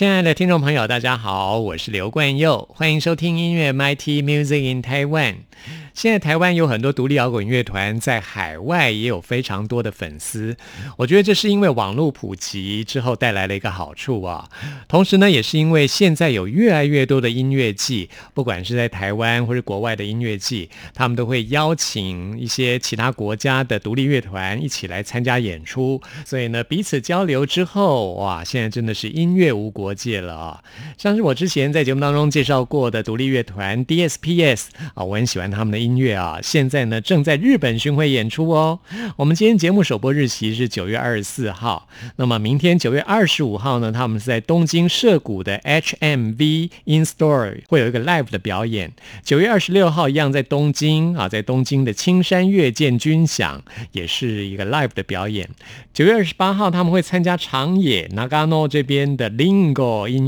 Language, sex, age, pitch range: Chinese, male, 50-69, 110-155 Hz